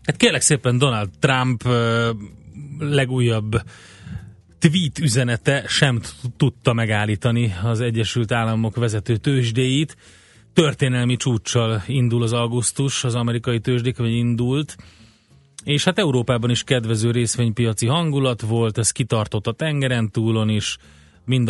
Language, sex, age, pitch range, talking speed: Hungarian, male, 30-49, 110-125 Hz, 110 wpm